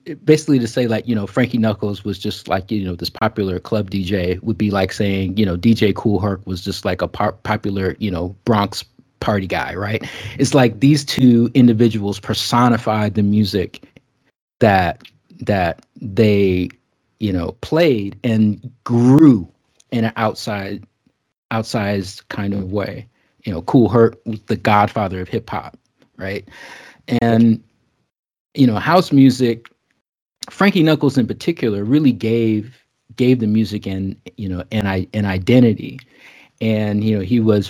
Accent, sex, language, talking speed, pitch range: American, male, English, 155 wpm, 100-125 Hz